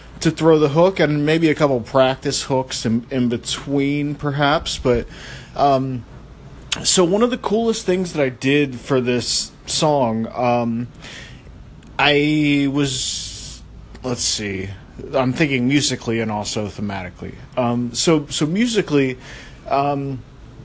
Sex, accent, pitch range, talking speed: male, American, 120-150 Hz, 130 wpm